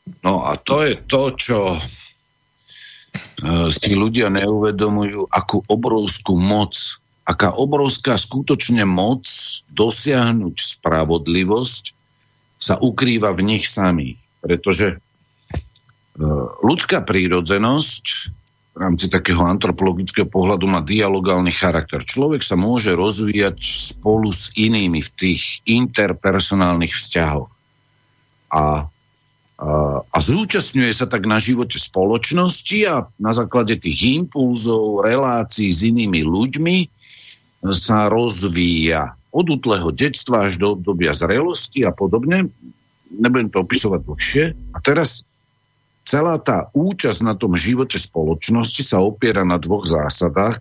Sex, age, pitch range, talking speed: male, 50-69, 95-125 Hz, 110 wpm